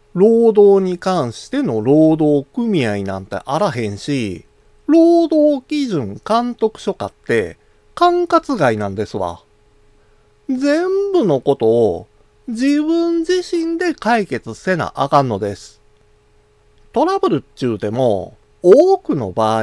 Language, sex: Japanese, male